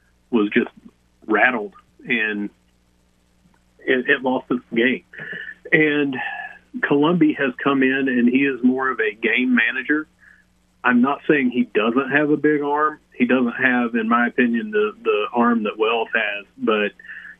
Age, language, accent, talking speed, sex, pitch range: 40-59, English, American, 150 wpm, male, 110-150 Hz